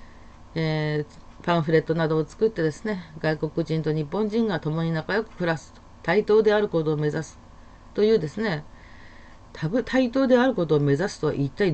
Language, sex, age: Japanese, female, 40-59